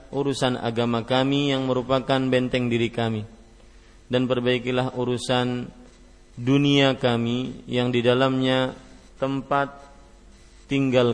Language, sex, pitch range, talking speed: Malay, male, 115-130 Hz, 95 wpm